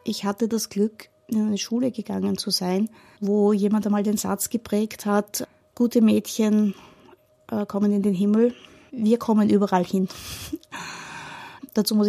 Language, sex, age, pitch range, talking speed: German, female, 20-39, 195-215 Hz, 145 wpm